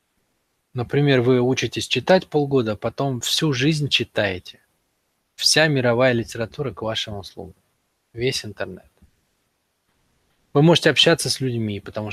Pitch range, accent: 110-135 Hz, native